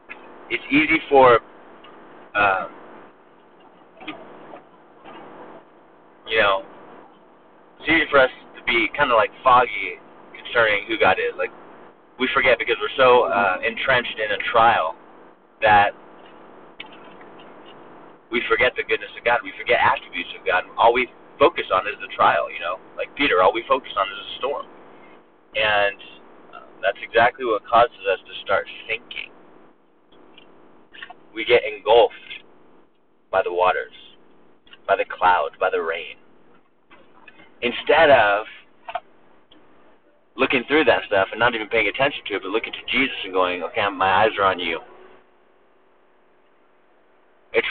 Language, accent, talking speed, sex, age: English, American, 135 wpm, male, 30-49